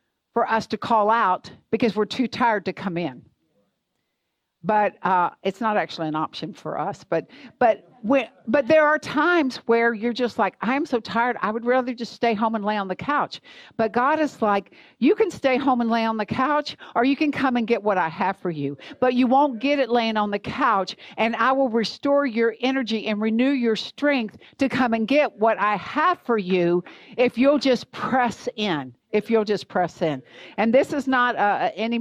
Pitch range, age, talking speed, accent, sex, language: 200-250 Hz, 60-79, 210 wpm, American, female, English